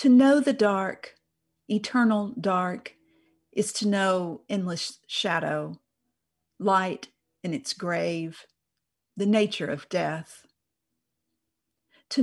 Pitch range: 165-225 Hz